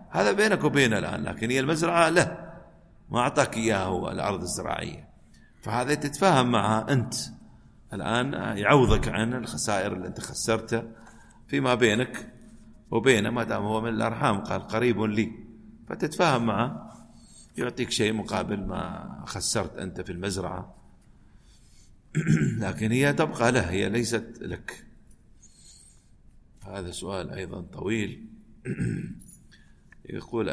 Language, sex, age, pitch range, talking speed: Arabic, male, 40-59, 100-120 Hz, 115 wpm